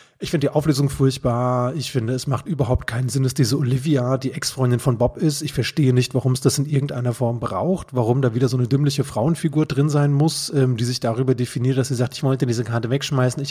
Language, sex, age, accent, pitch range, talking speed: German, male, 30-49, German, 130-160 Hz, 240 wpm